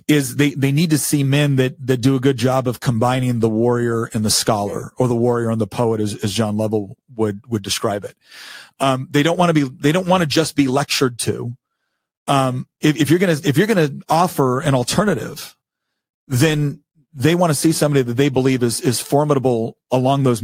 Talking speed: 220 wpm